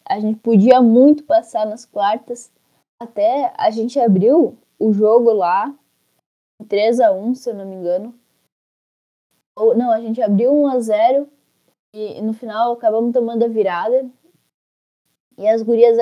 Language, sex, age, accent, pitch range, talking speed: Portuguese, female, 10-29, Brazilian, 205-255 Hz, 140 wpm